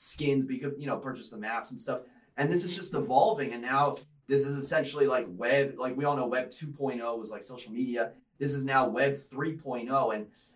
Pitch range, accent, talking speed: 125-150 Hz, American, 210 wpm